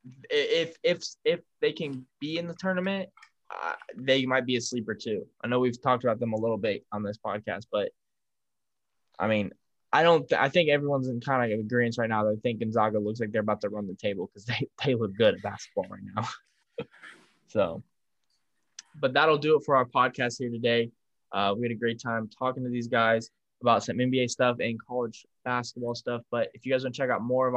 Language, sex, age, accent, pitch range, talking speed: English, male, 10-29, American, 120-135 Hz, 225 wpm